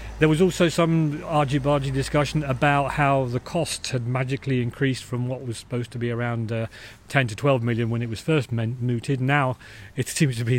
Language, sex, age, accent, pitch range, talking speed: English, male, 40-59, British, 120-145 Hz, 200 wpm